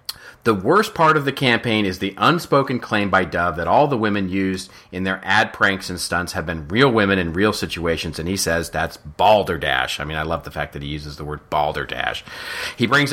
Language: English